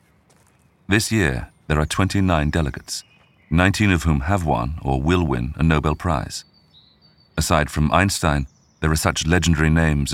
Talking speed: 150 wpm